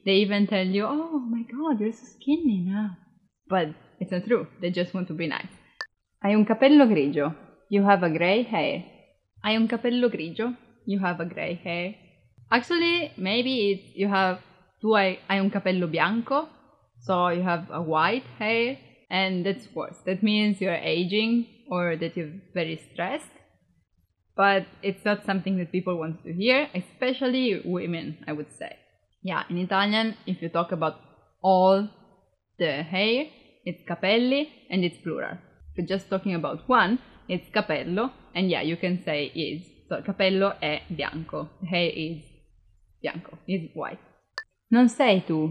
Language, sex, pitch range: English, female, 170-225 Hz